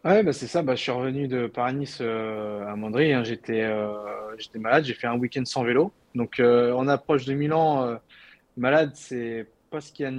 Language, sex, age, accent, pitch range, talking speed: French, male, 20-39, French, 120-140 Hz, 230 wpm